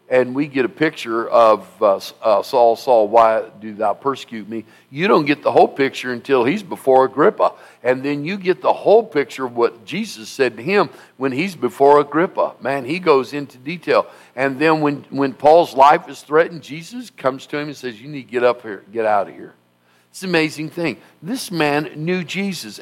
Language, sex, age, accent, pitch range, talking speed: English, male, 50-69, American, 115-160 Hz, 210 wpm